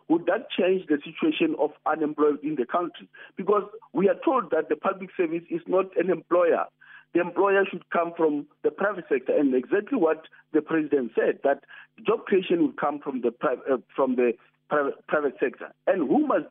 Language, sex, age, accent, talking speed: English, male, 50-69, South African, 185 wpm